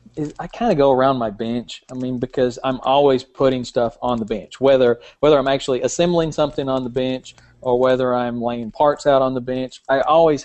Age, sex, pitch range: 40-59, male, 120-135 Hz